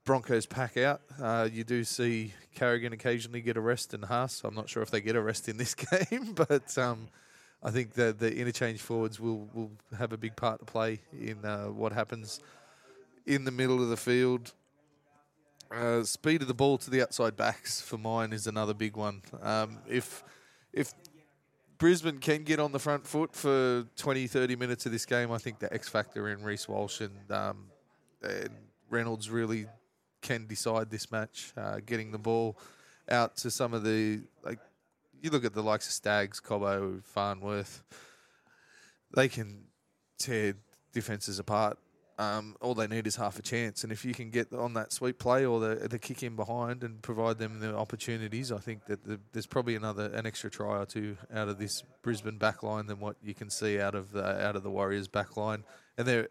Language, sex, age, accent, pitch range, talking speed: English, male, 20-39, Australian, 105-125 Hz, 200 wpm